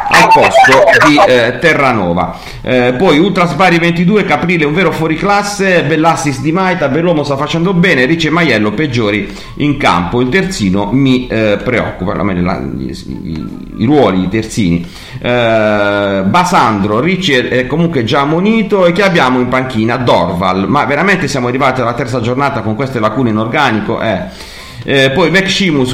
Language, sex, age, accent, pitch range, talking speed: Italian, male, 40-59, native, 110-165 Hz, 165 wpm